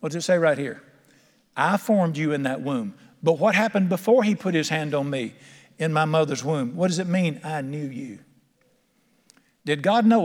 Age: 50-69